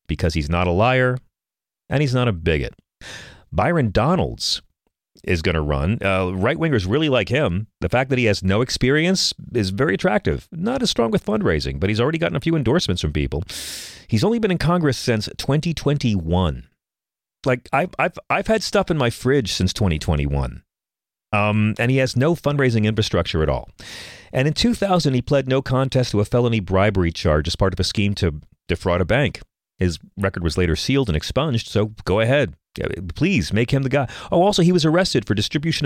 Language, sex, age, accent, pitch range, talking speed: English, male, 40-59, American, 85-130 Hz, 190 wpm